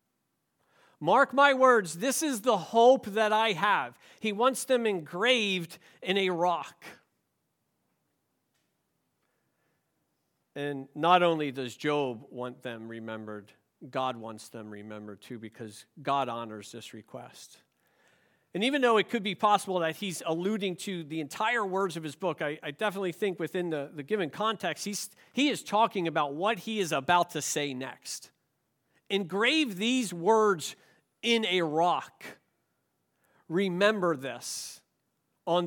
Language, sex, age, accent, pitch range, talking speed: English, male, 50-69, American, 145-210 Hz, 135 wpm